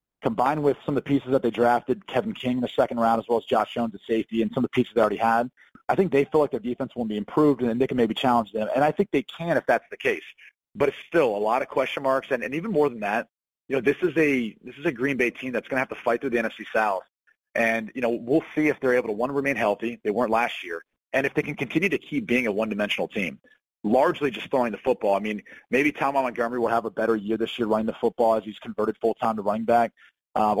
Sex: male